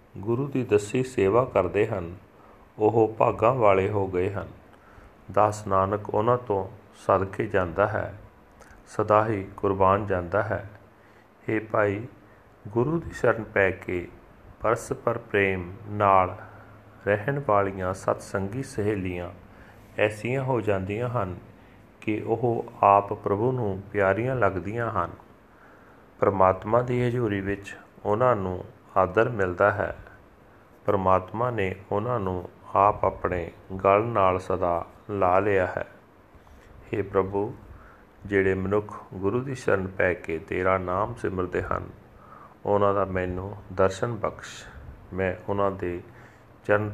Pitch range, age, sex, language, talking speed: 95-110 Hz, 40-59, male, Punjabi, 120 wpm